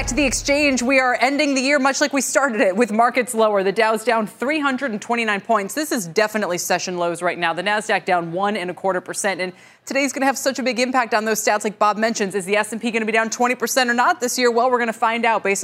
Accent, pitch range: American, 185-245 Hz